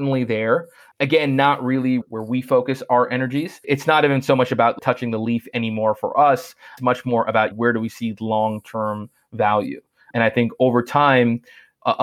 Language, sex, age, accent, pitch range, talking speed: English, male, 30-49, American, 110-120 Hz, 180 wpm